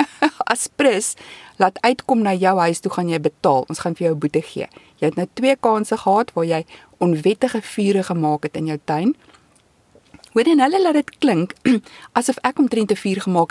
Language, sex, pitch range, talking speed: English, female, 160-215 Hz, 195 wpm